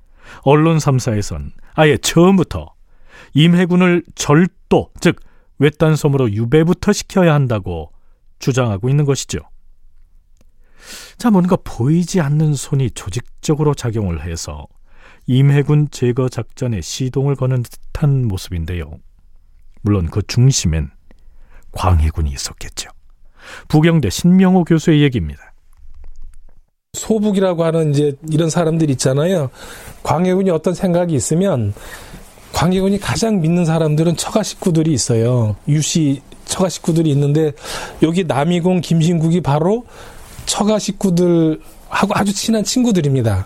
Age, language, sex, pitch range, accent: 40-59, Korean, male, 110-175 Hz, native